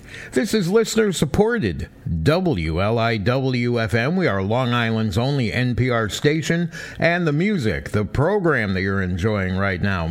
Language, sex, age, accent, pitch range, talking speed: English, male, 60-79, American, 105-155 Hz, 125 wpm